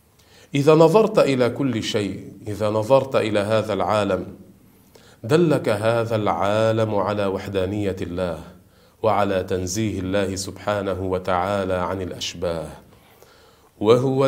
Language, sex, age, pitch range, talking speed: Arabic, male, 40-59, 95-125 Hz, 100 wpm